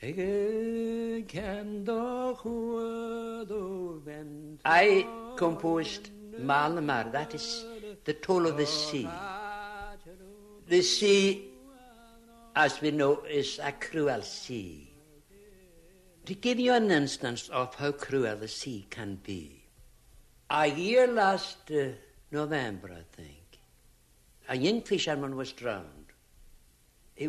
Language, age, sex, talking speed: English, 60-79, male, 95 wpm